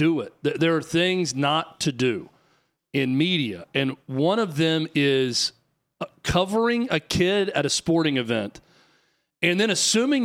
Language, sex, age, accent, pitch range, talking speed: English, male, 40-59, American, 135-170 Hz, 145 wpm